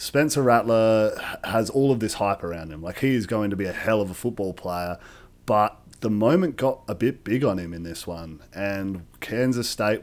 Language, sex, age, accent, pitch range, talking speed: English, male, 30-49, Australian, 95-115 Hz, 215 wpm